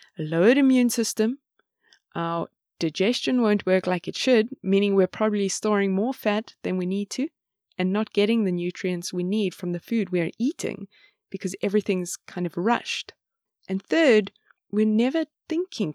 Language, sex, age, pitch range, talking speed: English, female, 20-39, 185-240 Hz, 165 wpm